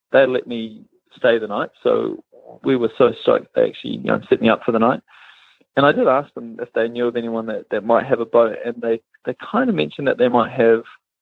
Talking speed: 250 wpm